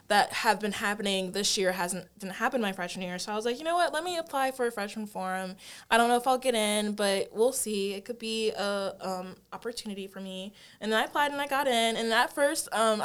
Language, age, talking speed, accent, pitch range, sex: English, 20-39, 260 wpm, American, 185-230 Hz, female